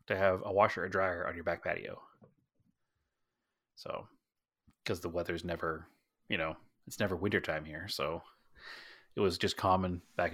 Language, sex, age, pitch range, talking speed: English, male, 30-49, 90-105 Hz, 165 wpm